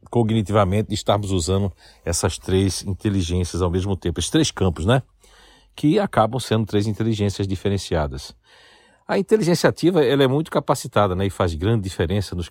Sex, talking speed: male, 155 wpm